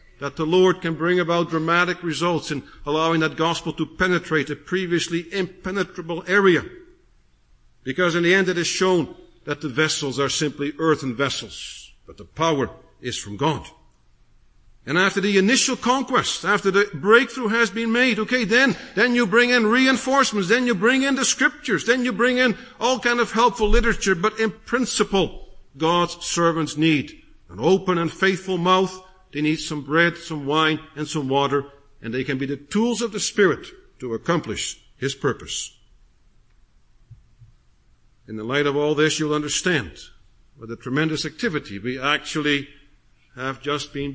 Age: 50-69